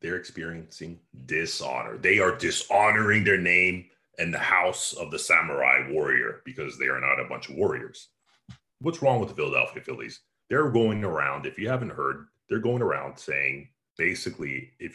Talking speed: 170 wpm